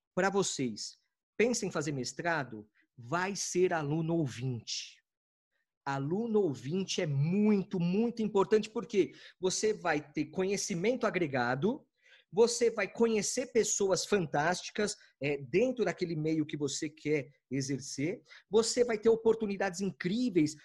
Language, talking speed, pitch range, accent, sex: Portuguese, 115 wpm, 155-220 Hz, Brazilian, male